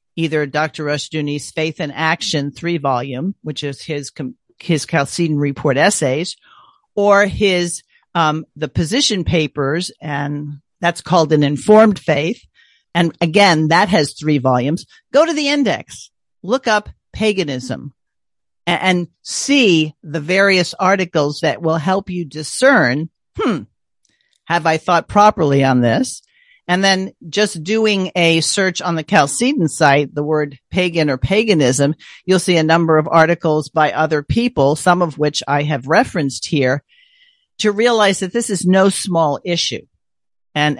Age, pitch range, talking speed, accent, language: 50-69, 145-190 Hz, 145 wpm, American, English